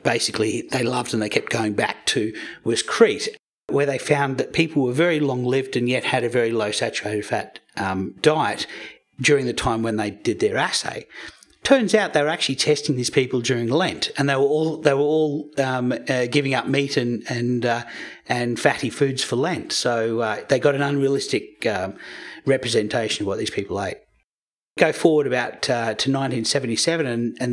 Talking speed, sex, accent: 190 wpm, male, Australian